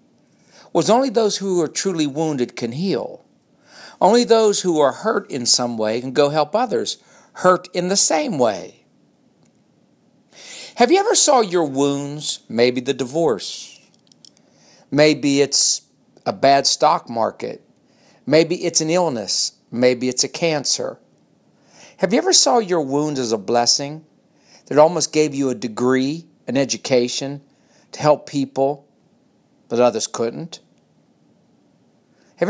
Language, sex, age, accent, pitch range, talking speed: English, male, 50-69, American, 140-200 Hz, 135 wpm